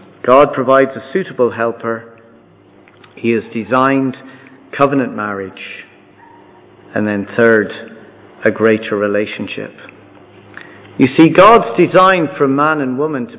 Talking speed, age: 110 wpm, 50-69